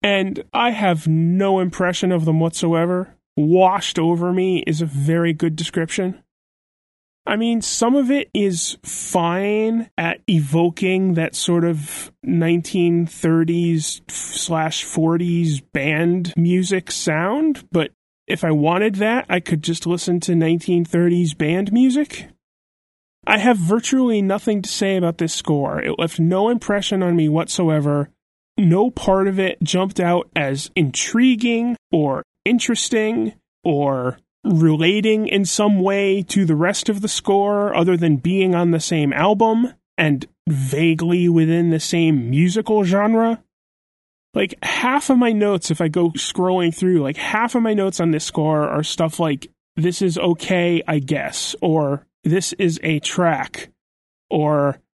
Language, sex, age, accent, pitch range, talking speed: English, male, 30-49, American, 165-200 Hz, 140 wpm